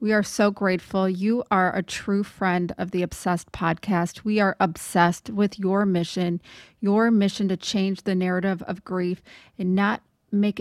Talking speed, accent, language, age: 170 wpm, American, English, 30-49